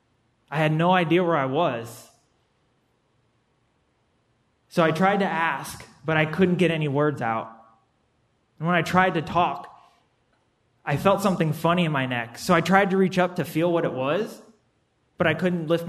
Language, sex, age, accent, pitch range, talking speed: English, male, 20-39, American, 125-165 Hz, 180 wpm